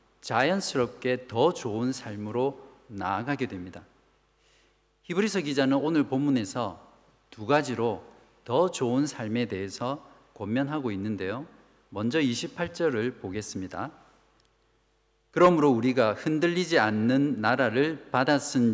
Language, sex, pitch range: Korean, male, 115-155 Hz